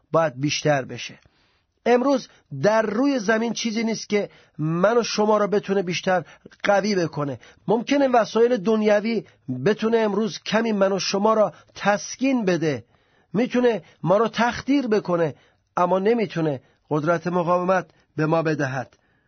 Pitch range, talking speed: 155-205 Hz, 130 wpm